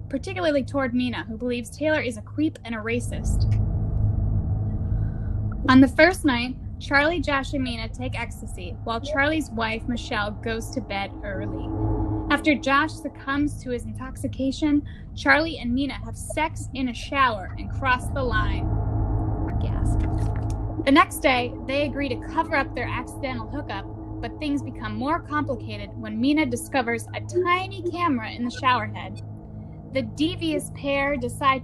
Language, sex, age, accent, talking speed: English, female, 10-29, American, 150 wpm